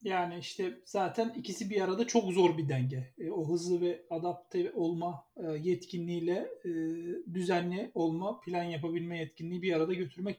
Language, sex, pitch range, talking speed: Turkish, male, 170-235 Hz, 155 wpm